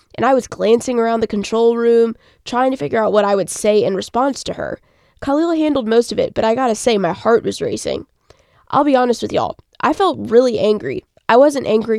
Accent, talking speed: American, 225 wpm